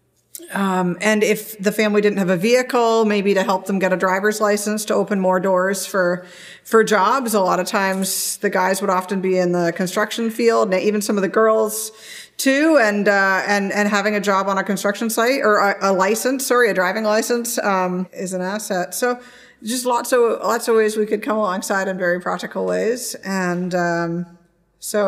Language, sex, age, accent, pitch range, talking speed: English, female, 40-59, American, 175-210 Hz, 205 wpm